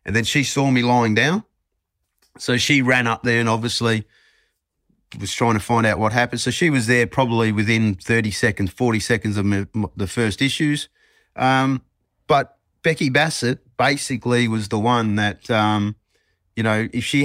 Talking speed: 170 wpm